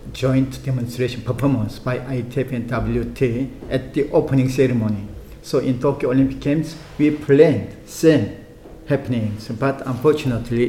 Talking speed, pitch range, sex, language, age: 125 wpm, 115-135 Hz, male, Czech, 50-69